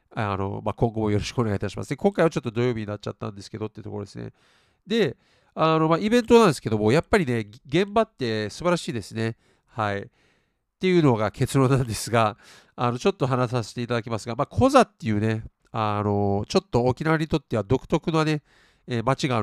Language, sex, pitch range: Japanese, male, 110-155 Hz